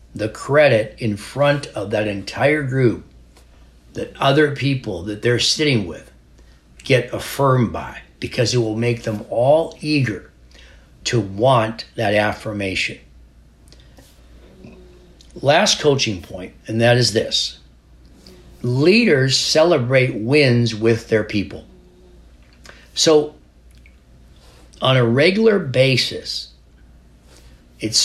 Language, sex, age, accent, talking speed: English, male, 60-79, American, 105 wpm